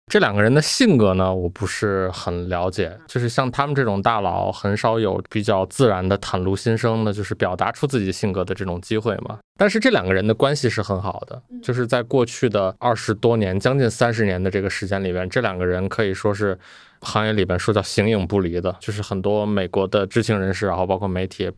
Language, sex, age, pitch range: Chinese, male, 20-39, 95-115 Hz